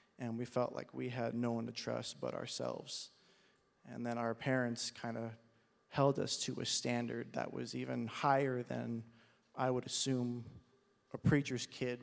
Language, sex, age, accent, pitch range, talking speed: English, male, 30-49, American, 120-140 Hz, 170 wpm